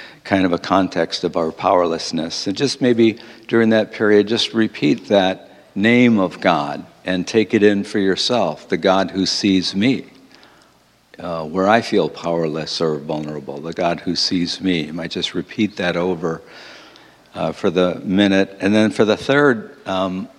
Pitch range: 90-110 Hz